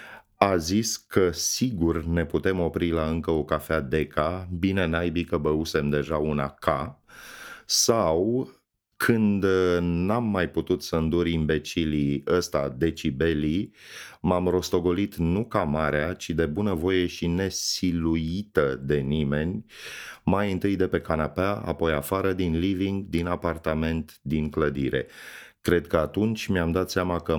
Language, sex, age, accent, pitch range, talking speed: Romanian, male, 30-49, native, 75-90 Hz, 135 wpm